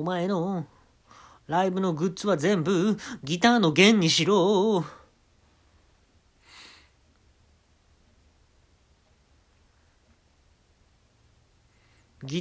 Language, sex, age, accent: Japanese, male, 40-59, native